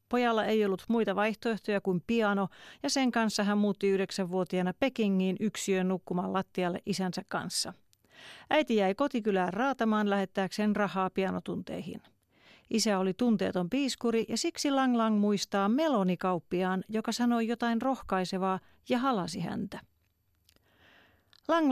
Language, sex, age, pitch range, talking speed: Finnish, female, 40-59, 190-240 Hz, 120 wpm